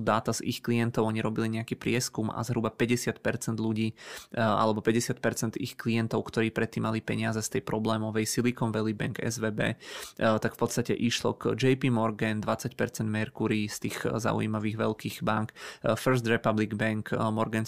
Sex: male